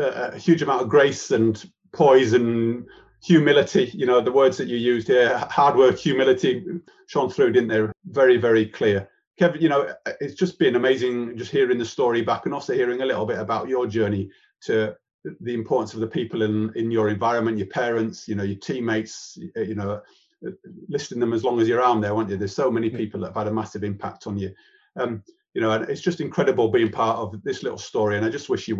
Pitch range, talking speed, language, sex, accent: 105-145 Hz, 220 wpm, English, male, British